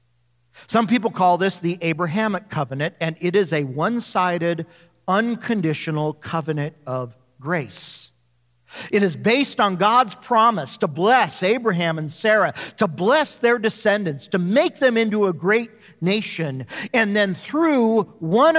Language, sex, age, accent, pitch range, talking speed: English, male, 50-69, American, 150-225 Hz, 140 wpm